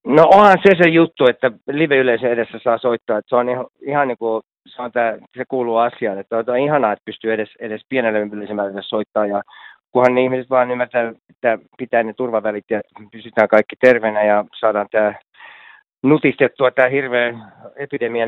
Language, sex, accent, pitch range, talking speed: Finnish, male, native, 120-170 Hz, 180 wpm